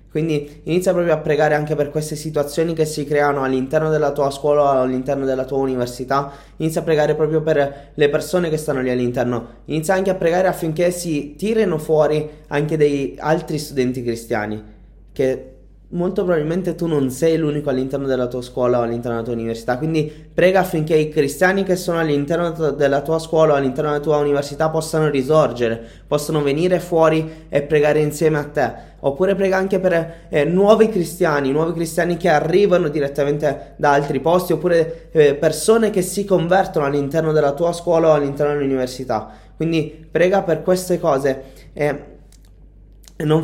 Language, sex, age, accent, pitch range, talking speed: Italian, male, 20-39, native, 135-160 Hz, 170 wpm